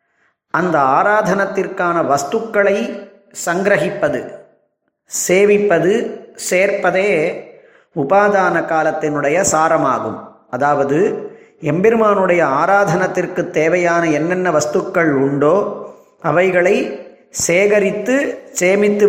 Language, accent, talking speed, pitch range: Tamil, native, 60 wpm, 165-210 Hz